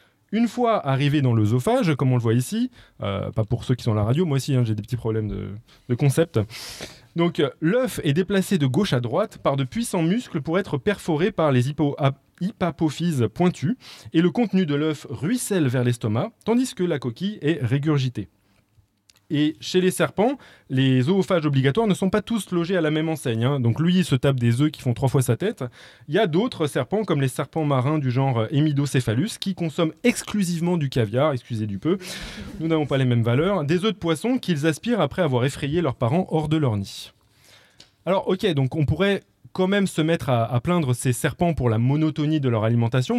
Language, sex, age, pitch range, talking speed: French, male, 20-39, 125-180 Hz, 210 wpm